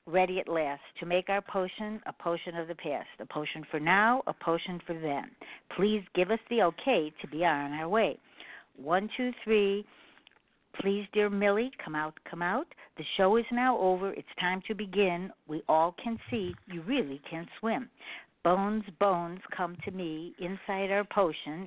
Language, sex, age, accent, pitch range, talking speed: English, female, 60-79, American, 160-210 Hz, 180 wpm